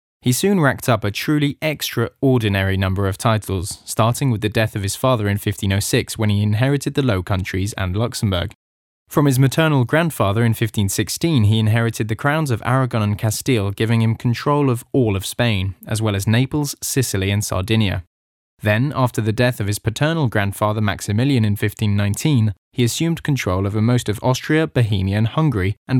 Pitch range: 100-130 Hz